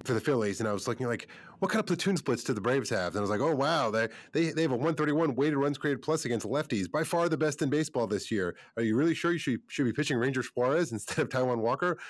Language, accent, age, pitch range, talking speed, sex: English, American, 30-49, 110-145 Hz, 290 wpm, male